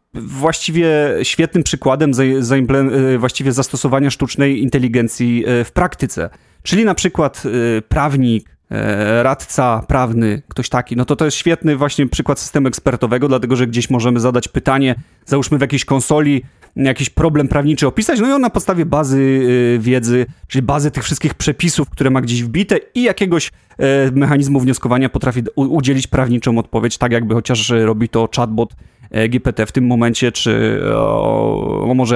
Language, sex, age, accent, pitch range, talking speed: Polish, male, 30-49, native, 125-150 Hz, 145 wpm